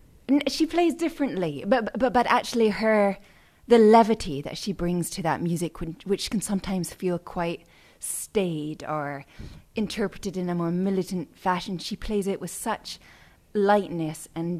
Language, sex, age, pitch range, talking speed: English, female, 20-39, 160-205 Hz, 150 wpm